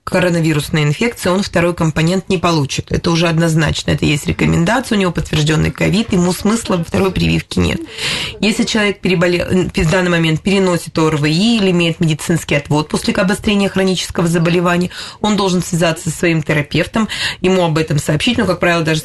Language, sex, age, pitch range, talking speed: Russian, female, 20-39, 155-195 Hz, 165 wpm